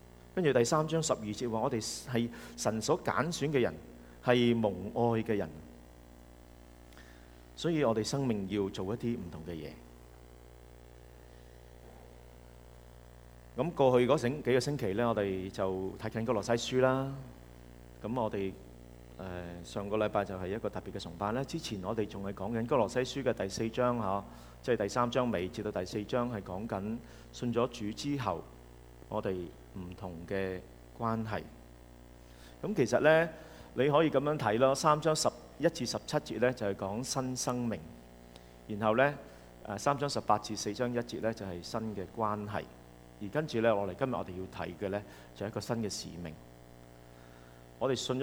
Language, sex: English, male